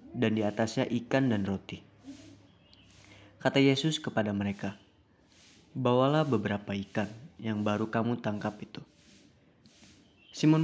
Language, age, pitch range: Indonesian, 20-39, 100-125 Hz